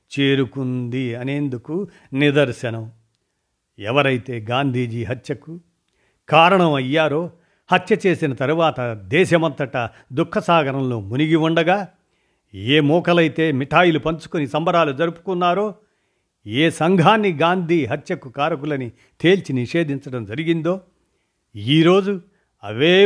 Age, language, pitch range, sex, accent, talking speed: 50-69, Telugu, 125-165 Hz, male, native, 80 wpm